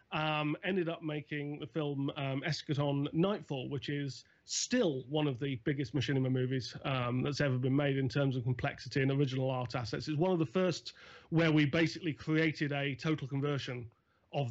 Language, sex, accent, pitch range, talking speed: English, male, British, 140-170 Hz, 180 wpm